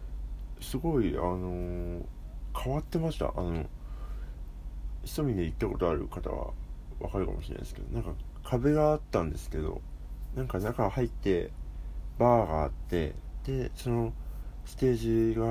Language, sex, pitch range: Japanese, male, 70-95 Hz